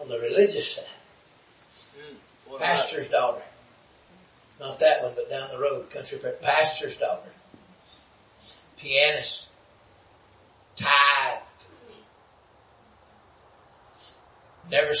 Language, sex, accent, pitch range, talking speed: English, male, American, 155-210 Hz, 75 wpm